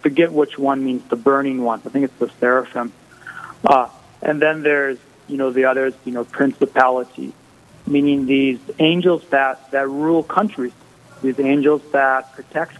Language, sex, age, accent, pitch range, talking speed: English, male, 30-49, American, 125-145 Hz, 160 wpm